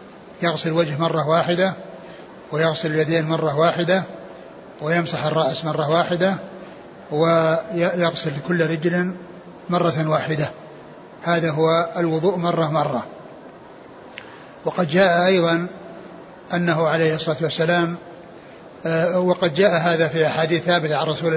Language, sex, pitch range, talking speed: Arabic, male, 165-185 Hz, 105 wpm